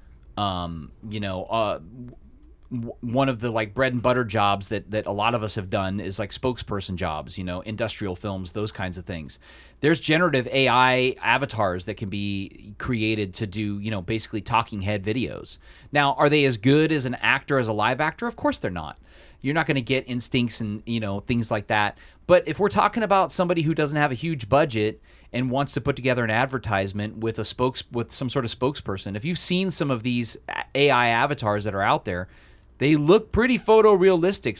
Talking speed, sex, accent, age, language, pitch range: 205 wpm, male, American, 30-49, English, 105-135 Hz